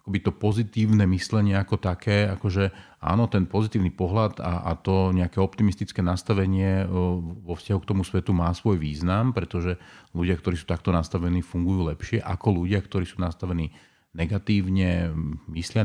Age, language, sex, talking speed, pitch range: 40-59, Slovak, male, 155 wpm, 90-100 Hz